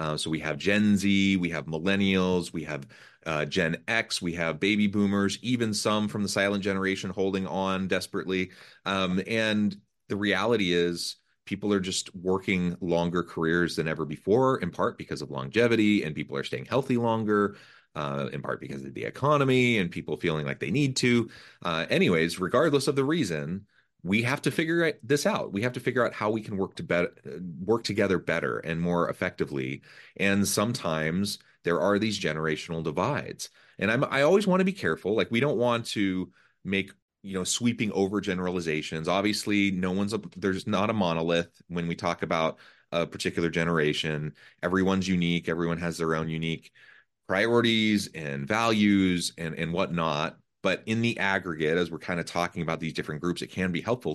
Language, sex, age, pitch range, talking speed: English, male, 30-49, 85-105 Hz, 185 wpm